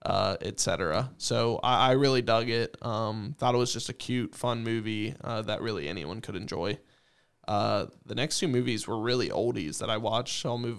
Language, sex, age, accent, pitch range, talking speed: English, male, 20-39, American, 115-130 Hz, 205 wpm